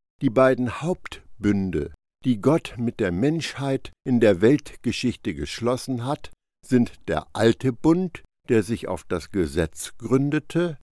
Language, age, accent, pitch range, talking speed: German, 60-79, German, 95-145 Hz, 125 wpm